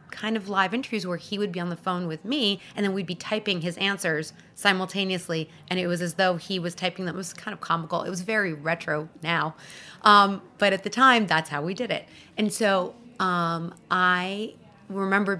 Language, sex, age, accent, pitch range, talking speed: English, female, 30-49, American, 165-200 Hz, 210 wpm